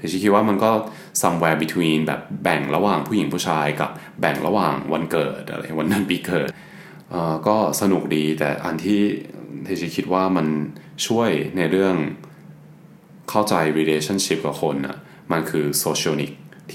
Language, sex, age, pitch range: Thai, male, 20-39, 75-95 Hz